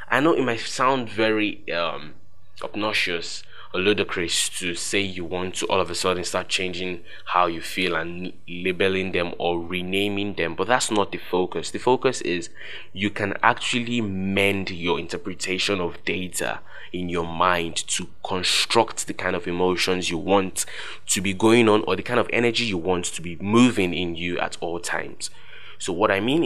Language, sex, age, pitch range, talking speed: English, male, 10-29, 90-100 Hz, 180 wpm